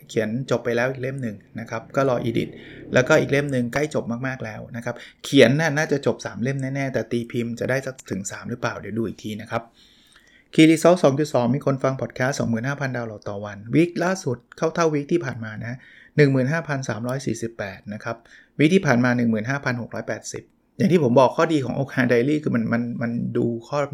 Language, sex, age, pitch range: Thai, male, 20-39, 115-145 Hz